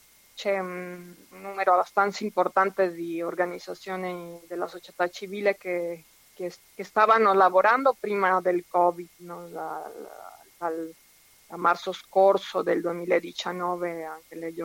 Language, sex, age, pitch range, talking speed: Italian, female, 20-39, 175-195 Hz, 115 wpm